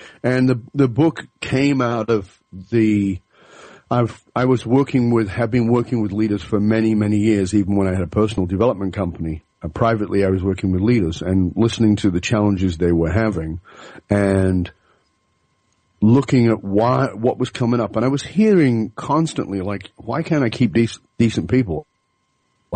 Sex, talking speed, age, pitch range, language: male, 180 wpm, 40-59, 100-120 Hz, English